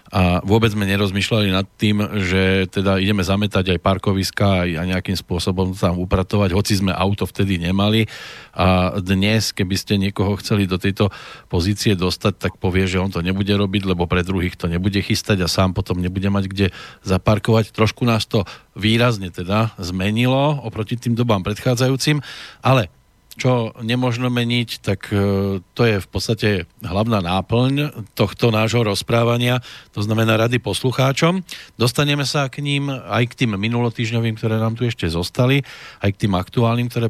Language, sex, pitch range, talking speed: Slovak, male, 95-115 Hz, 160 wpm